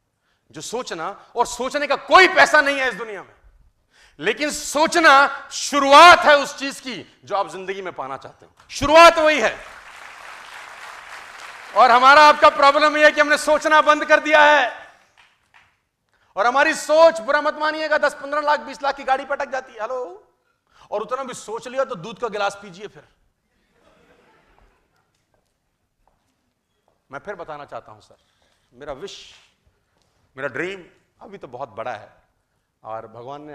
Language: Hindi